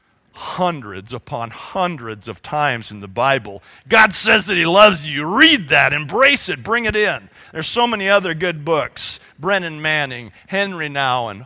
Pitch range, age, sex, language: 170-270 Hz, 40-59, male, English